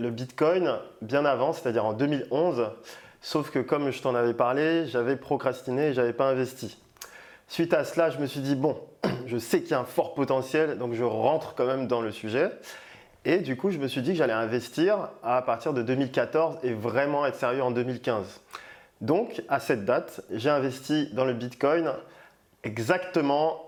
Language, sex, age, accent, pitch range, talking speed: French, male, 20-39, French, 120-150 Hz, 190 wpm